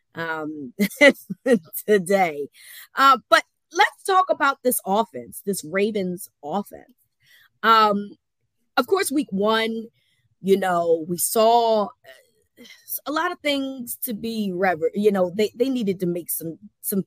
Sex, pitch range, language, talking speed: female, 175-225 Hz, English, 130 wpm